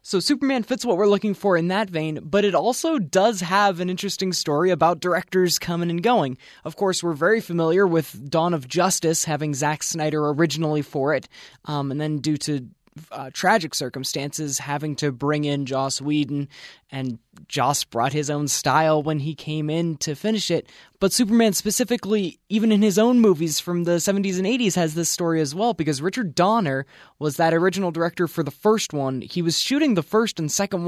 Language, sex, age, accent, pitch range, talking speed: English, male, 20-39, American, 150-195 Hz, 195 wpm